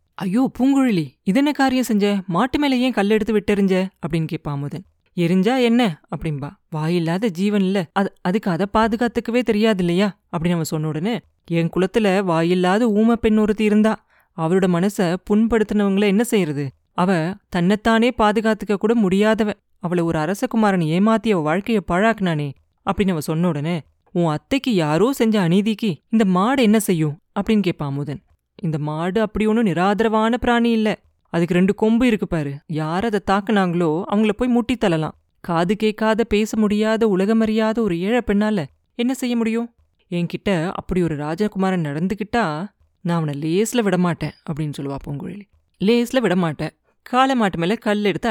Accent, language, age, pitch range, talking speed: native, Tamil, 20-39, 170-220 Hz, 140 wpm